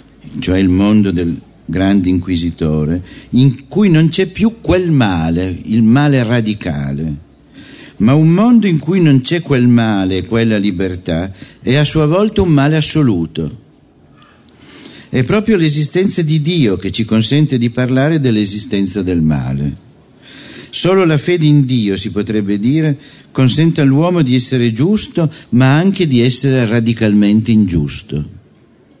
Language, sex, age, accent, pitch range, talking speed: Italian, male, 50-69, native, 95-145 Hz, 135 wpm